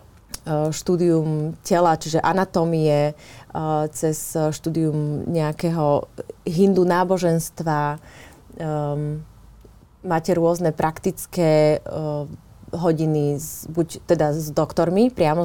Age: 30-49